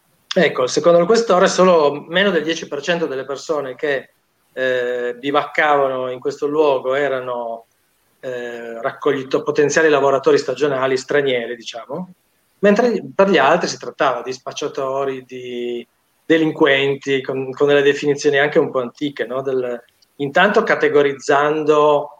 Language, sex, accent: Italian, male, native